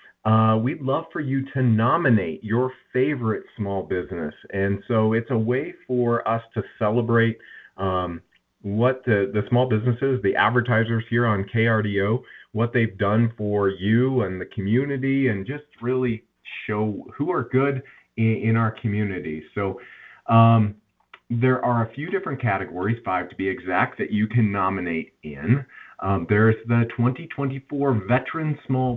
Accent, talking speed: American, 150 wpm